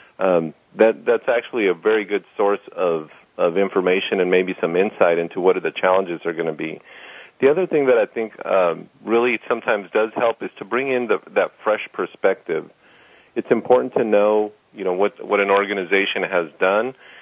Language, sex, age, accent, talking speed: English, male, 40-59, American, 190 wpm